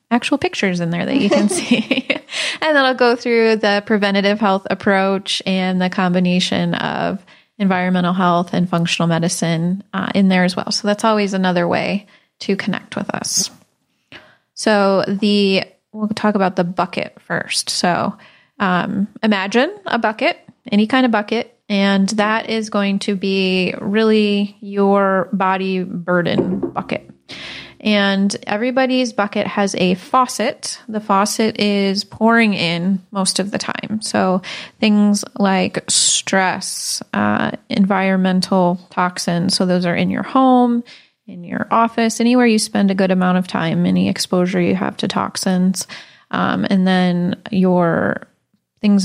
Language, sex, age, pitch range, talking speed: English, female, 20-39, 185-220 Hz, 145 wpm